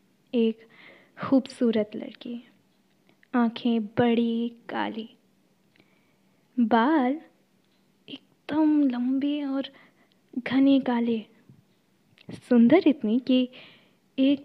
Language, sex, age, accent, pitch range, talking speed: Hindi, female, 20-39, native, 225-270 Hz, 65 wpm